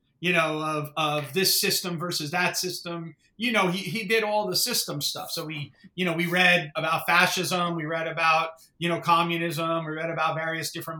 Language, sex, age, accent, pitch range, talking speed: English, male, 30-49, American, 165-185 Hz, 200 wpm